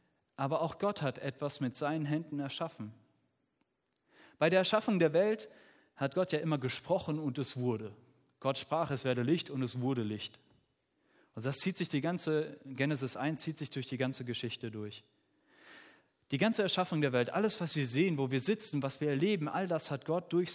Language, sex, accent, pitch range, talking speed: German, male, German, 125-165 Hz, 195 wpm